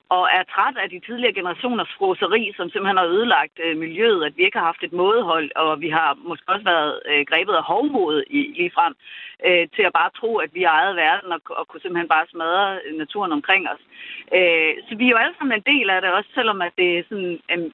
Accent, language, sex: native, Danish, female